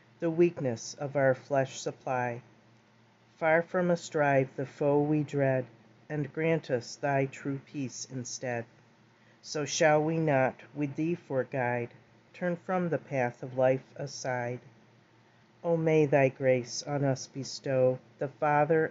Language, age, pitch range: English, 40-59, 120-150 Hz